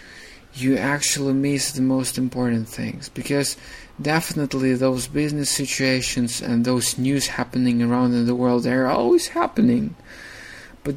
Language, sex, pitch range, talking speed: English, male, 125-145 Hz, 130 wpm